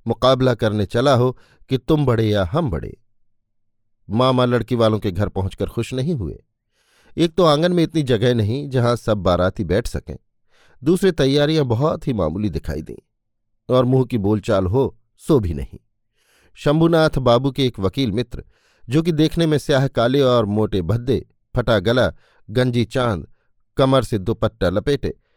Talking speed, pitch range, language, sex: 165 wpm, 110-140 Hz, Hindi, male